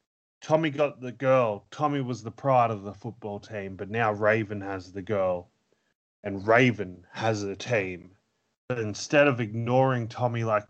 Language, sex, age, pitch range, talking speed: English, male, 30-49, 115-145 Hz, 165 wpm